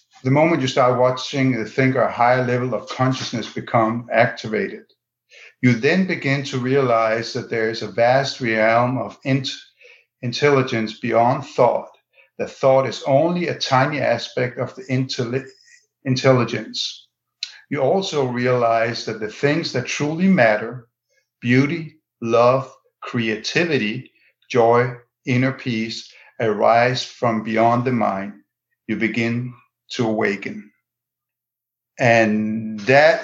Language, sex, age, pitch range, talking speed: English, male, 50-69, 115-130 Hz, 115 wpm